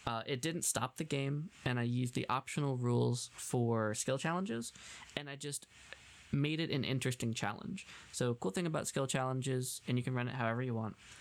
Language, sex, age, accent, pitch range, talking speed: English, male, 20-39, American, 110-130 Hz, 200 wpm